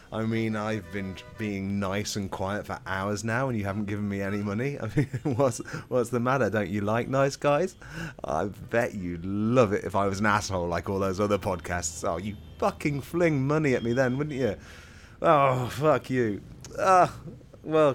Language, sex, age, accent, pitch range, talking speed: English, male, 30-49, British, 100-135 Hz, 195 wpm